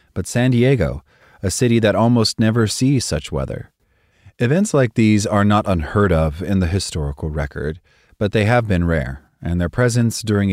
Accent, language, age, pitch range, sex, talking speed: American, English, 30-49, 85-110 Hz, male, 175 wpm